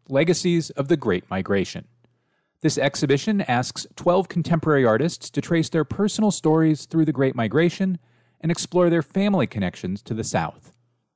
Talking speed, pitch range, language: 150 wpm, 125-185 Hz, English